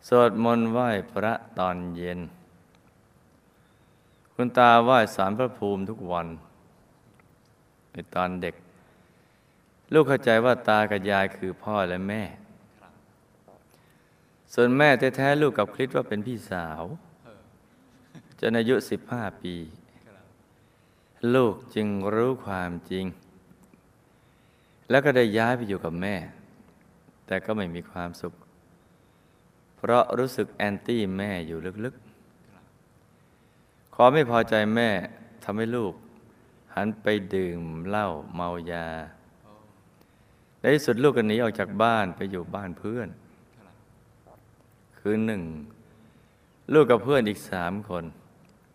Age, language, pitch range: 20-39, Thai, 90-115 Hz